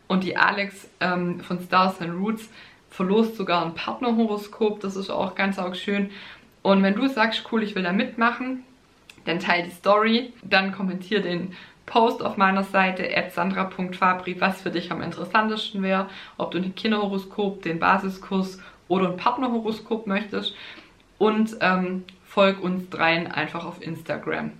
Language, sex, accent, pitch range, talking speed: German, female, German, 180-205 Hz, 155 wpm